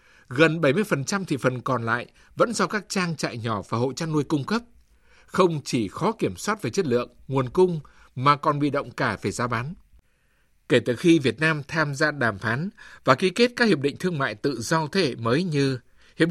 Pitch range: 130-175 Hz